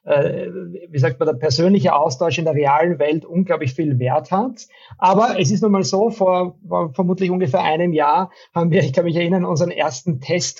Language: German